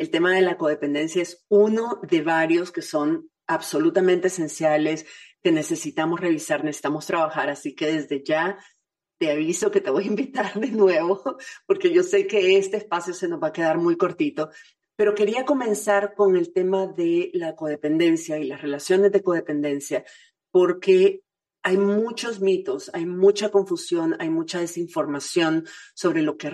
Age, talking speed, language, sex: 40-59, 160 wpm, Spanish, female